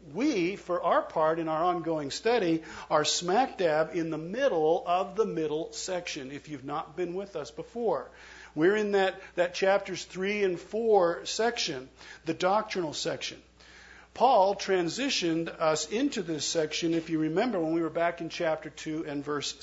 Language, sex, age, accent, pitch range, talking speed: English, male, 50-69, American, 160-205 Hz, 170 wpm